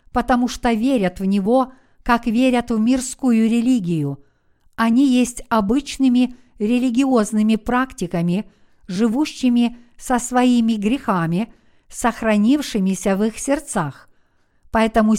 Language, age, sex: Russian, 50-69, female